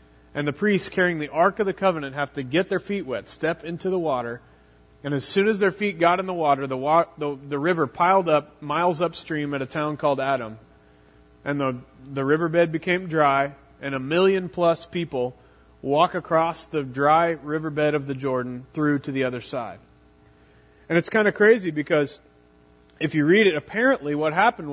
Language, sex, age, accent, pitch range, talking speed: English, male, 30-49, American, 135-175 Hz, 195 wpm